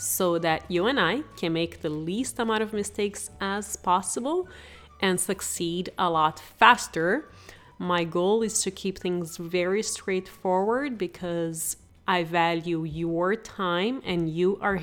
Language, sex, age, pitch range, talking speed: English, female, 30-49, 170-220 Hz, 140 wpm